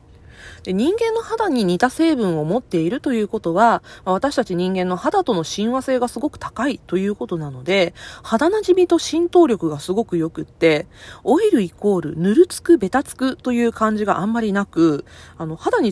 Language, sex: Japanese, female